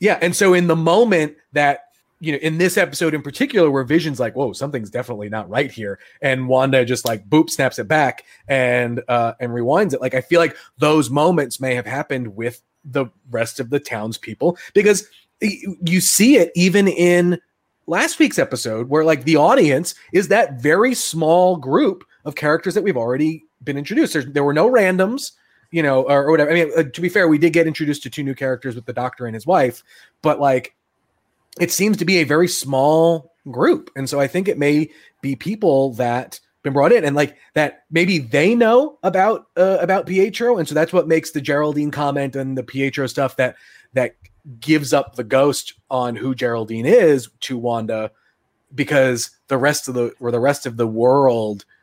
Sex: male